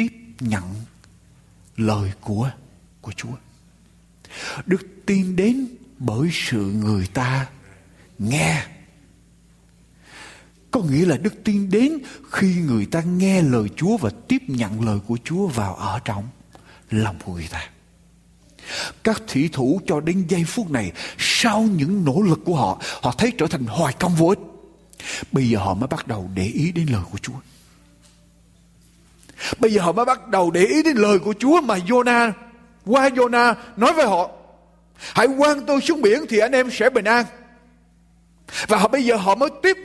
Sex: male